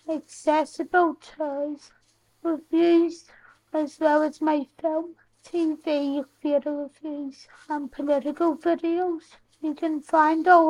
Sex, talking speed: female, 100 wpm